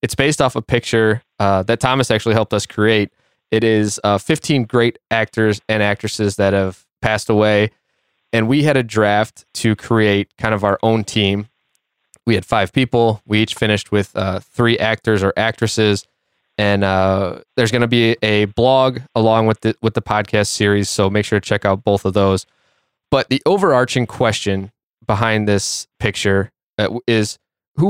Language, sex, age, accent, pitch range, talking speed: English, male, 20-39, American, 100-120 Hz, 175 wpm